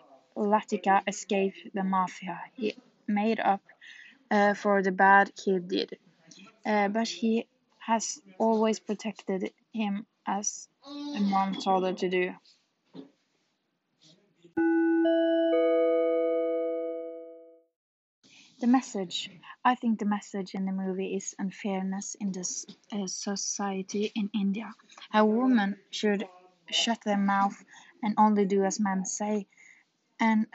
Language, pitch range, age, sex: French, 190-220 Hz, 20-39, female